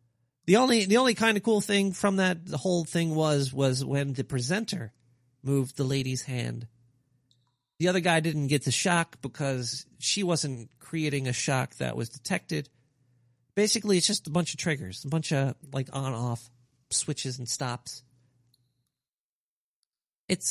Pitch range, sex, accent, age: 130-185 Hz, male, American, 40-59